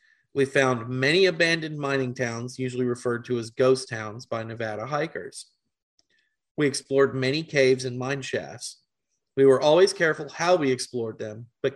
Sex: male